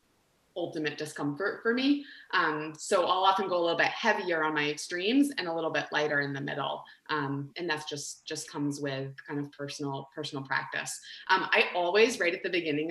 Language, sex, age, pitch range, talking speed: English, female, 20-39, 155-210 Hz, 200 wpm